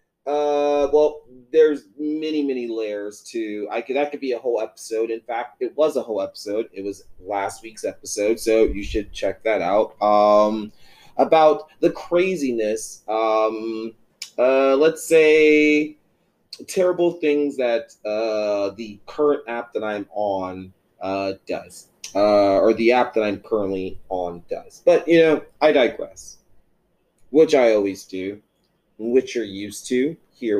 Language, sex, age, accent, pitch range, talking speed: English, male, 30-49, American, 105-160 Hz, 150 wpm